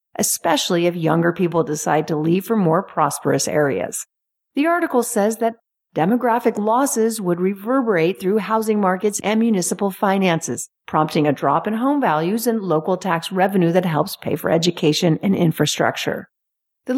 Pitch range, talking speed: 170-230 Hz, 150 wpm